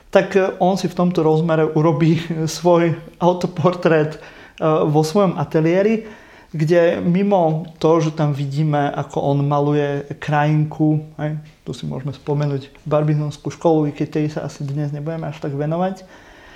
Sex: male